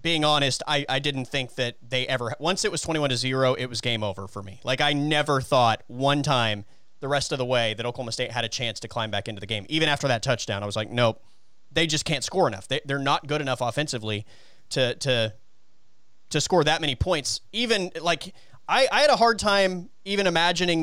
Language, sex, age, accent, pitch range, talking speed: English, male, 30-49, American, 130-185 Hz, 230 wpm